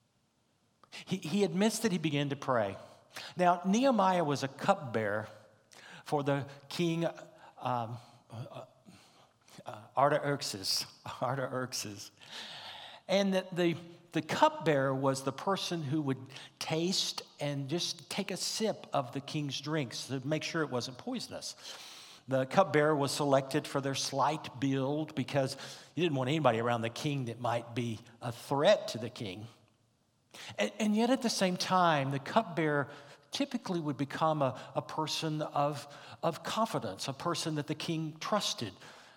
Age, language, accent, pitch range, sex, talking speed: 60-79, English, American, 130-170 Hz, male, 145 wpm